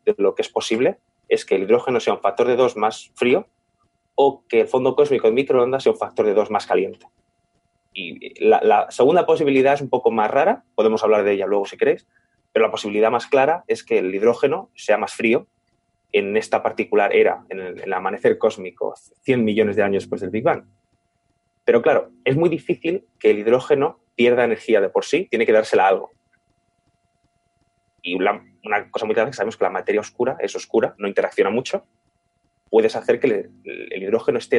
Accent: Spanish